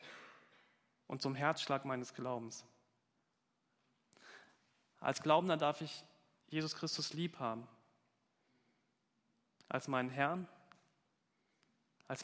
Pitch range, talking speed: 130-160 Hz, 85 wpm